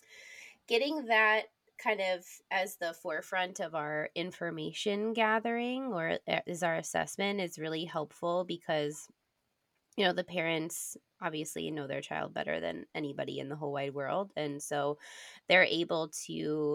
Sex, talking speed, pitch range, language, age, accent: female, 145 wpm, 150-190 Hz, English, 20-39, American